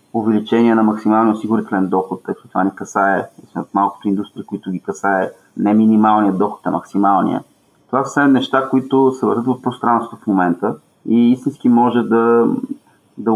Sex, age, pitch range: male, 30-49, 105-120 Hz